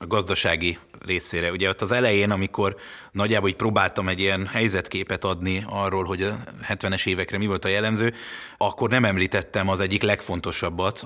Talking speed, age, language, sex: 165 wpm, 30-49, Hungarian, male